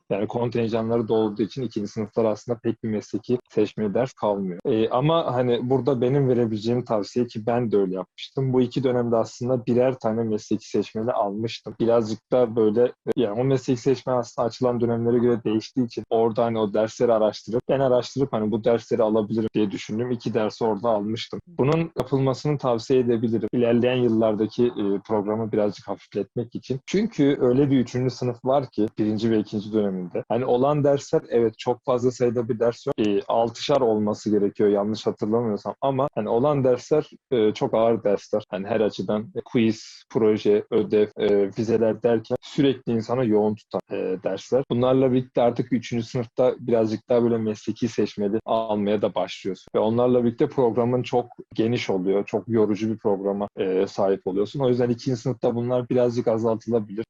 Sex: male